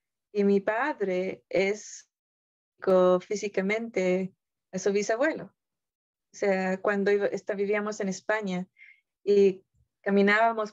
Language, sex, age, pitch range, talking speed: Spanish, female, 30-49, 185-215 Hz, 90 wpm